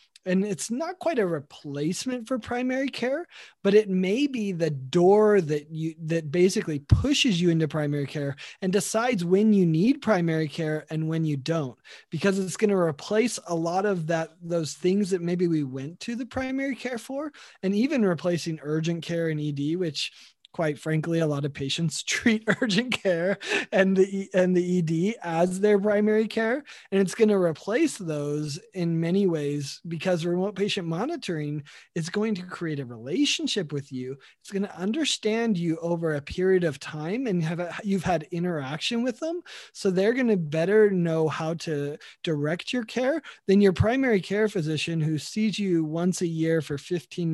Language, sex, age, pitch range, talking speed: English, male, 20-39, 160-210 Hz, 185 wpm